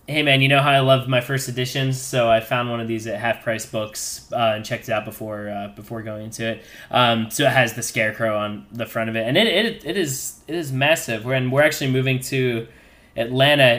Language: English